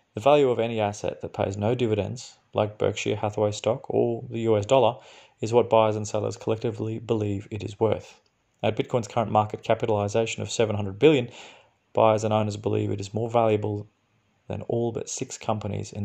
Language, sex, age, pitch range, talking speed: English, male, 30-49, 105-115 Hz, 185 wpm